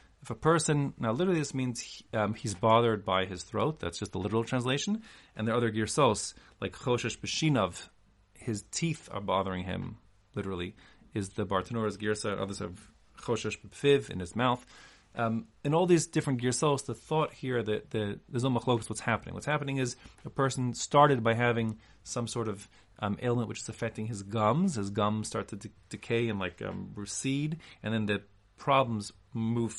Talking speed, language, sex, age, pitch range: 180 wpm, English, male, 30-49, 100-130 Hz